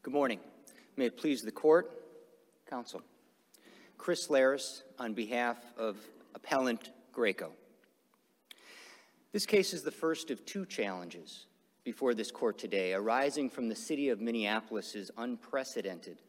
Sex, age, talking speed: male, 50-69, 125 wpm